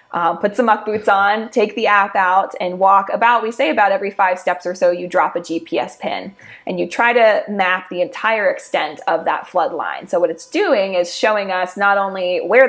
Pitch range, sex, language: 175-235 Hz, female, English